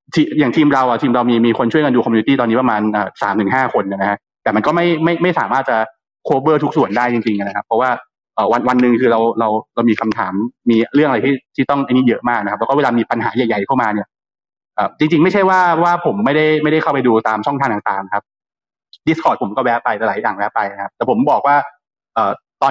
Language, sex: Thai, male